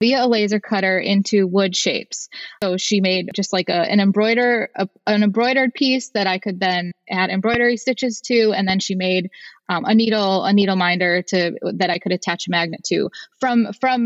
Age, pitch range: 20-39, 195-245 Hz